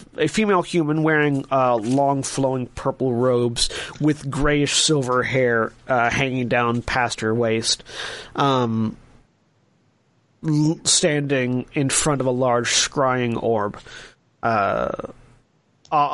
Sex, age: male, 30-49